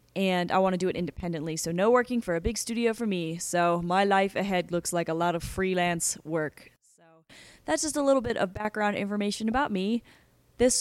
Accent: American